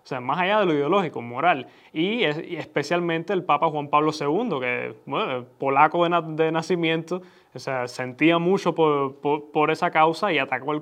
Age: 20-39